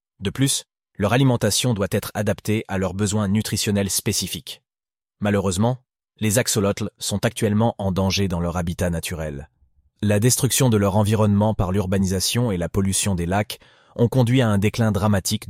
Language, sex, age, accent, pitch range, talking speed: French, male, 30-49, French, 95-115 Hz, 160 wpm